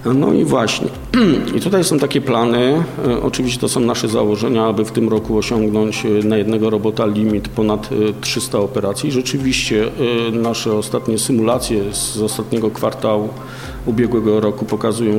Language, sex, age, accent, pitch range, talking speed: Polish, male, 50-69, native, 110-130 Hz, 140 wpm